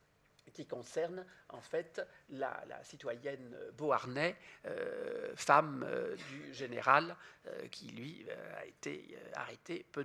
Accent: French